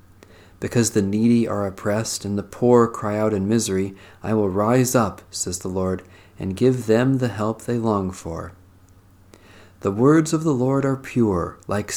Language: English